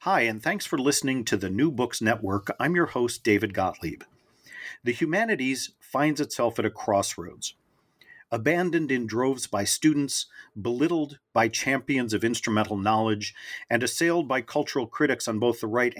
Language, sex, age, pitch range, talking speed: English, male, 50-69, 110-145 Hz, 160 wpm